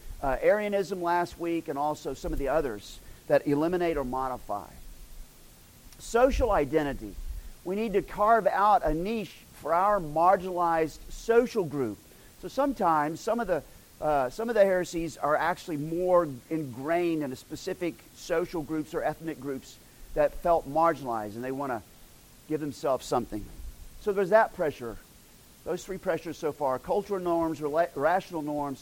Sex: male